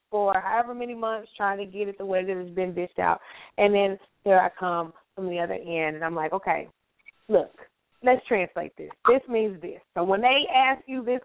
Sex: female